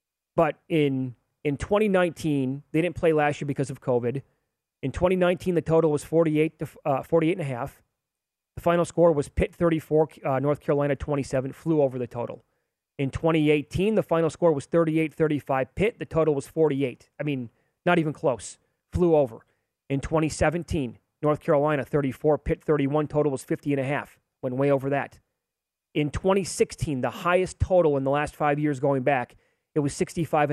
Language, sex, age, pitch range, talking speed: English, male, 30-49, 135-165 Hz, 175 wpm